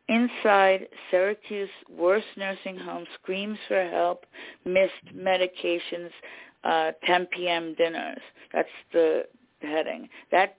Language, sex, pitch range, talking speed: English, female, 165-190 Hz, 110 wpm